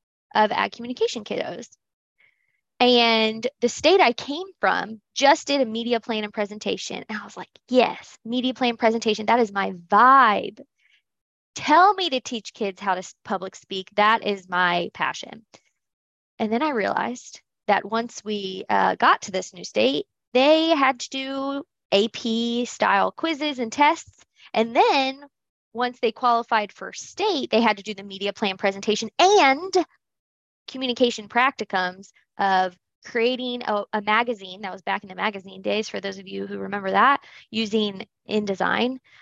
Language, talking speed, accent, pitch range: English, 155 wpm, American, 205-260 Hz